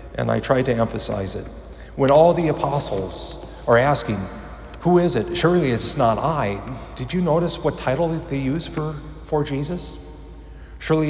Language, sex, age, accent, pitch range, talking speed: English, male, 40-59, American, 95-135 Hz, 160 wpm